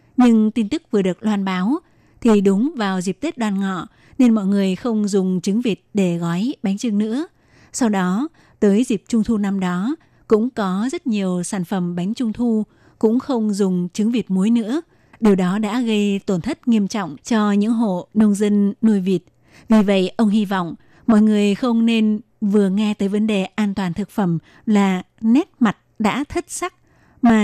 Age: 20-39